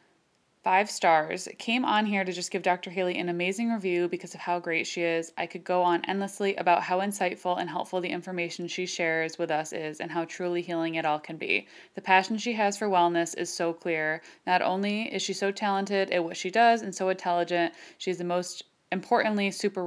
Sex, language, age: female, English, 20-39